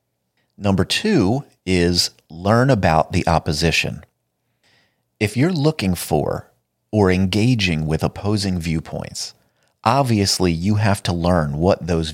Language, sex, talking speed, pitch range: English, male, 115 wpm, 85-115 Hz